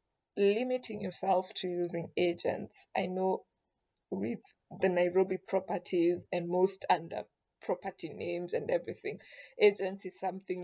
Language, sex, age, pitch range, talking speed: English, female, 20-39, 175-205 Hz, 120 wpm